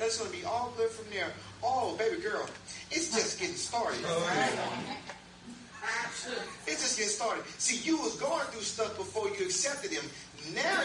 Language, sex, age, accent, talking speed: English, male, 30-49, American, 175 wpm